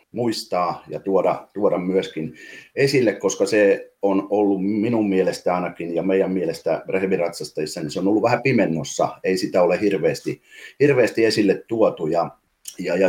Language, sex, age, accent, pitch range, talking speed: Finnish, male, 30-49, native, 90-110 Hz, 145 wpm